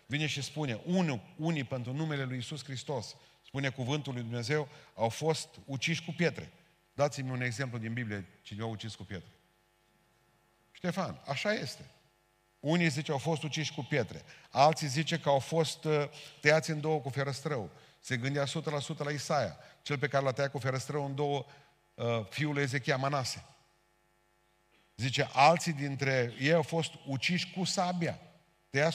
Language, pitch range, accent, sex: Romanian, 125-160 Hz, native, male